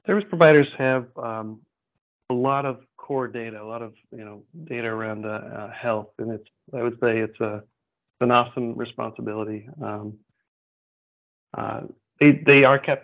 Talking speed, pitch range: 160 wpm, 110-125 Hz